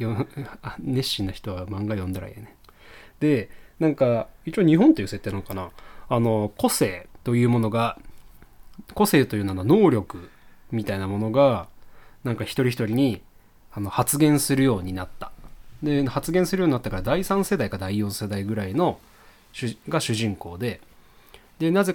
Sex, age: male, 20-39